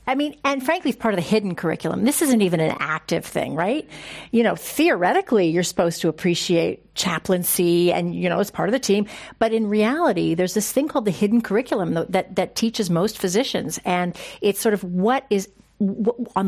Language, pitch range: English, 180-235 Hz